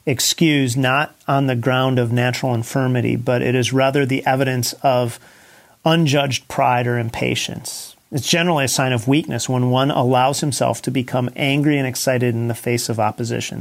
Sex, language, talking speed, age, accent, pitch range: male, English, 170 wpm, 40-59, American, 125-150 Hz